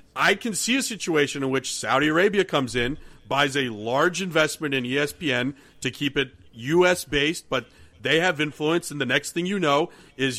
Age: 40-59